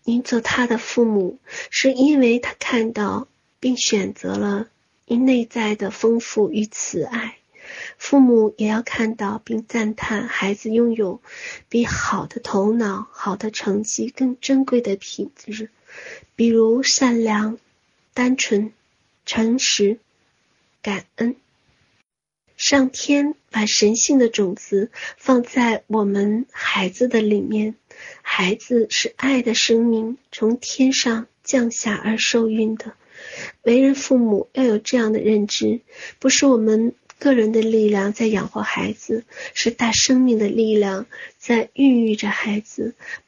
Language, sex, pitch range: Chinese, female, 215-245 Hz